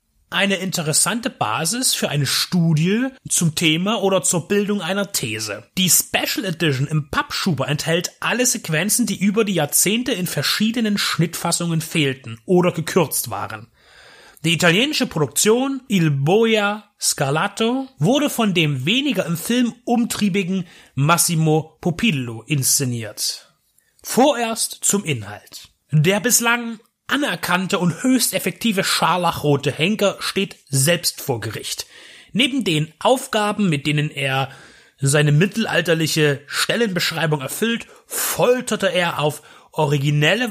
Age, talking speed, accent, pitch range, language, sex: 30-49, 115 wpm, German, 155-220 Hz, German, male